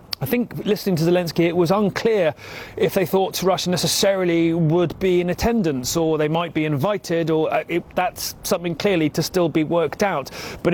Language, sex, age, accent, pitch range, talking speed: English, male, 30-49, British, 150-175 Hz, 190 wpm